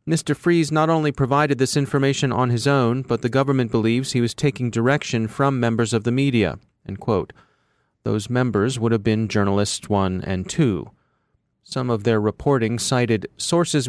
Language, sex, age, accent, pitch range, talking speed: English, male, 30-49, American, 115-145 Hz, 175 wpm